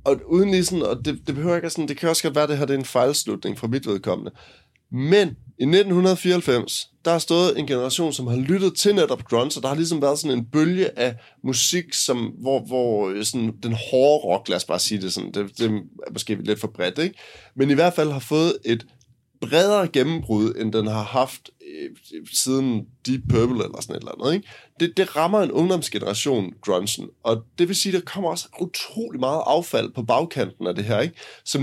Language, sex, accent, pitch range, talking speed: Danish, male, native, 120-170 Hz, 205 wpm